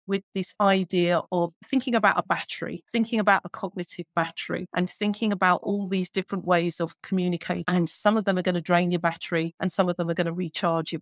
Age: 30-49